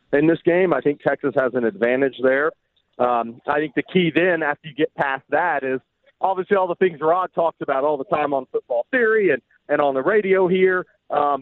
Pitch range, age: 125-175 Hz, 40-59